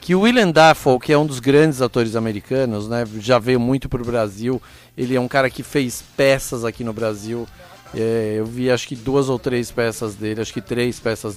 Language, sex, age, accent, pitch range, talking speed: Portuguese, male, 40-59, Brazilian, 120-160 Hz, 220 wpm